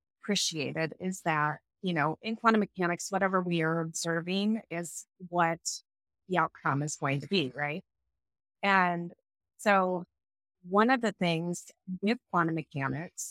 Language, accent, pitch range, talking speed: English, American, 160-190 Hz, 135 wpm